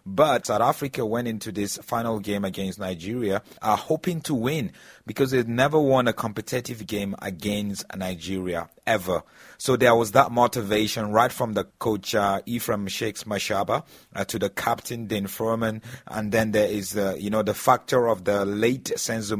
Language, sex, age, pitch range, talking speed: English, male, 30-49, 100-120 Hz, 175 wpm